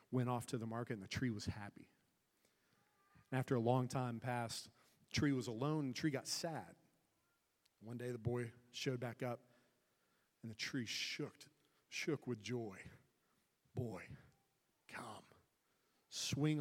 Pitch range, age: 115-135 Hz, 40-59